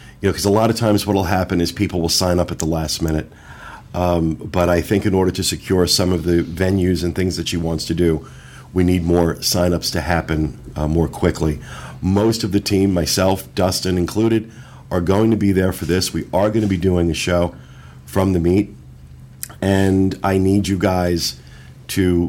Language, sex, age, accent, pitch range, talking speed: English, male, 50-69, American, 85-105 Hz, 210 wpm